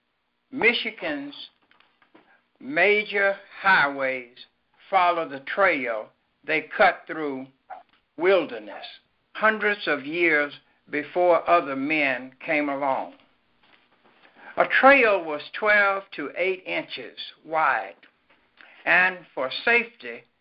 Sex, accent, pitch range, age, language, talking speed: male, American, 140-220 Hz, 60-79, English, 85 wpm